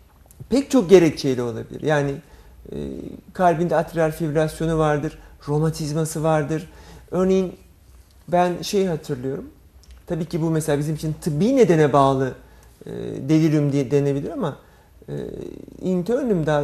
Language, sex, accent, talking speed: Turkish, male, native, 110 wpm